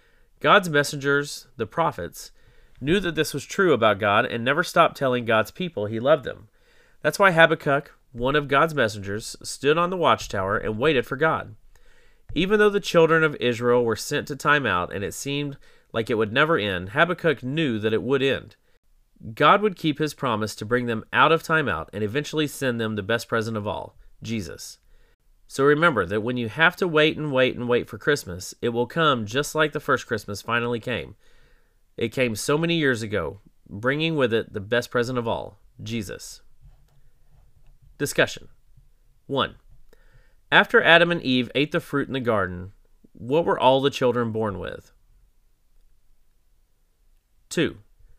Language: English